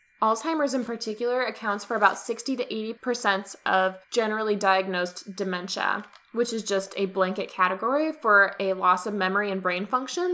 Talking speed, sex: 150 wpm, female